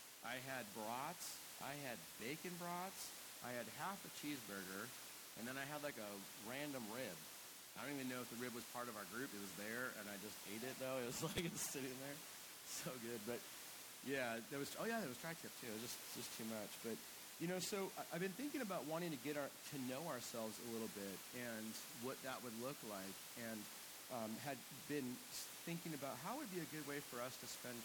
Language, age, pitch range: English, 40-59, 115-150 Hz